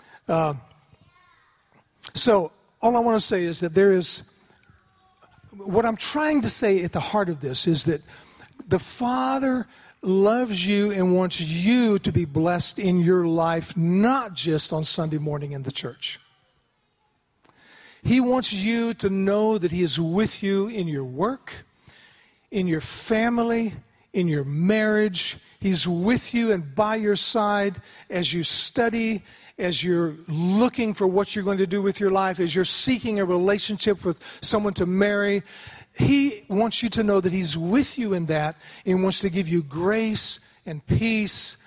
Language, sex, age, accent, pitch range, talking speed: English, male, 50-69, American, 165-215 Hz, 165 wpm